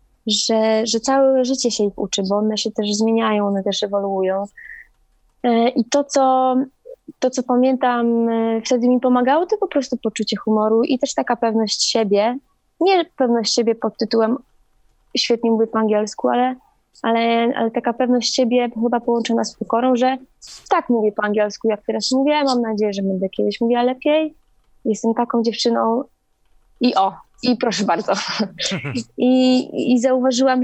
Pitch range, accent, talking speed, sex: 220-265 Hz, native, 155 wpm, female